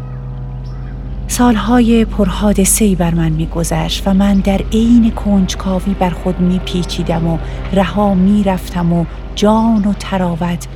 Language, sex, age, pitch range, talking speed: Persian, female, 40-59, 170-205 Hz, 115 wpm